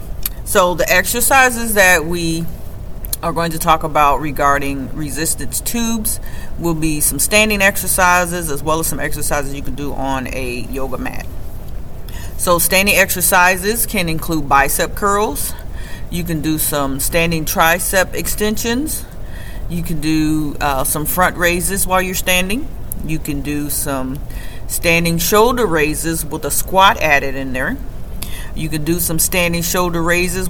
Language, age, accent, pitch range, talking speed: English, 40-59, American, 145-195 Hz, 145 wpm